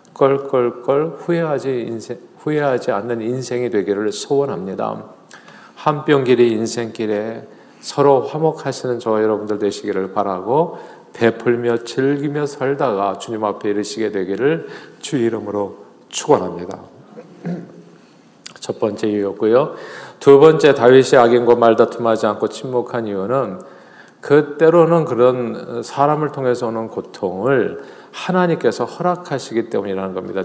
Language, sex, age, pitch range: Korean, male, 40-59, 110-140 Hz